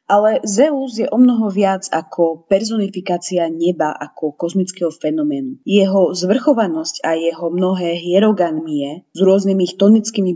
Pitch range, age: 170-230 Hz, 30-49